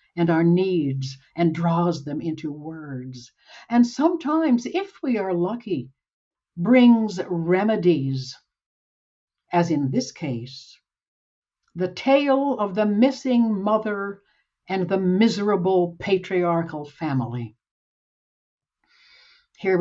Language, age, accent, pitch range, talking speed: English, 60-79, American, 150-235 Hz, 95 wpm